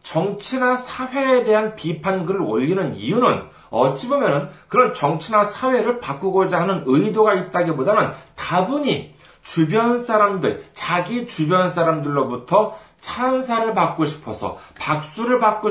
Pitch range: 145-225 Hz